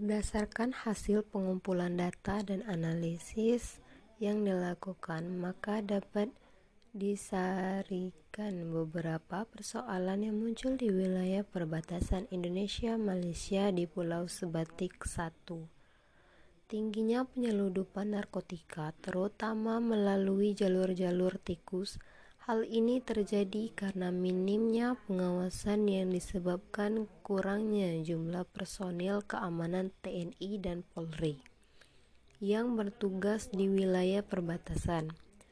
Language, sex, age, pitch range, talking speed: Indonesian, female, 20-39, 180-210 Hz, 85 wpm